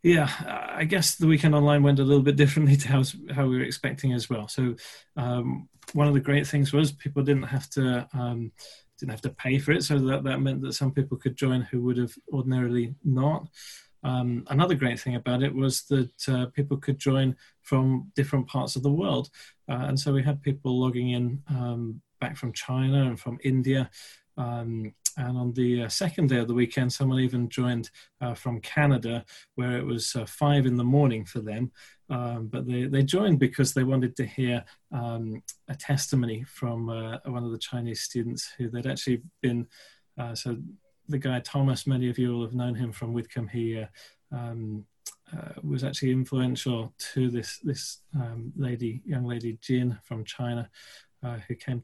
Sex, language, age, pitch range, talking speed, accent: male, English, 20-39, 120-140 Hz, 195 wpm, British